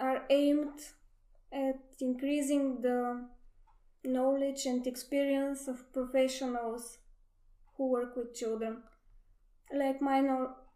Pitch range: 245-270 Hz